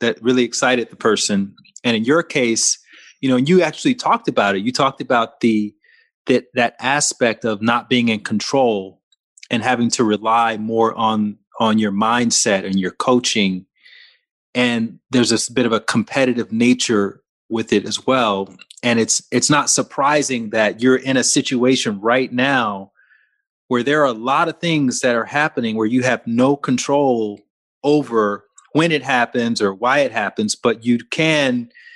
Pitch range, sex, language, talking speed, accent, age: 110-140 Hz, male, English, 170 wpm, American, 30-49